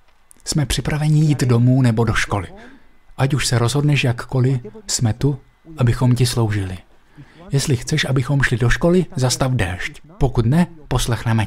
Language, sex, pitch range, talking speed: Slovak, male, 125-180 Hz, 145 wpm